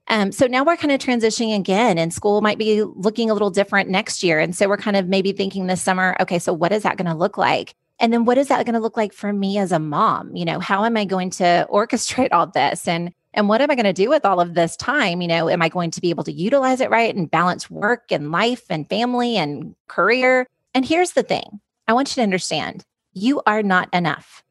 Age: 30-49